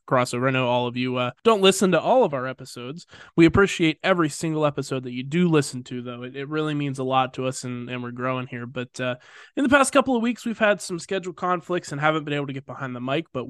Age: 20-39